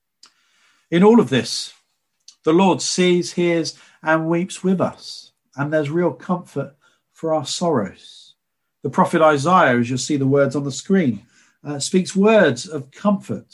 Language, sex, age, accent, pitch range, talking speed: English, male, 50-69, British, 125-165 Hz, 155 wpm